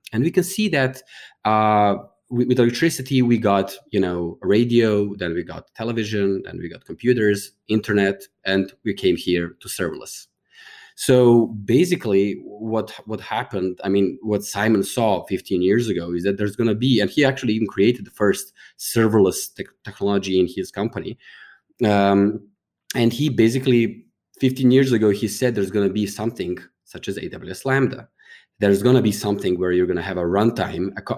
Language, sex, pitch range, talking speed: English, male, 95-120 Hz, 175 wpm